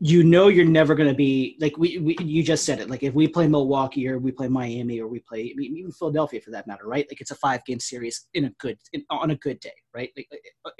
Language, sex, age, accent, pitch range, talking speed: English, male, 30-49, American, 130-160 Hz, 280 wpm